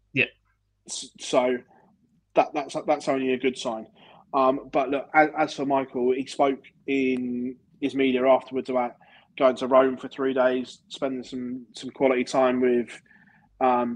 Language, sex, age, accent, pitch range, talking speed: English, male, 20-39, British, 125-150 Hz, 150 wpm